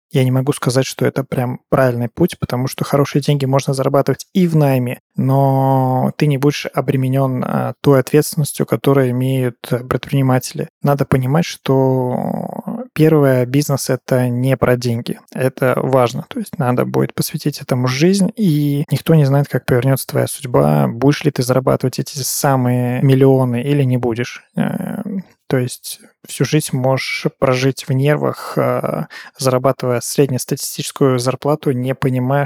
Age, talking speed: 20-39, 145 wpm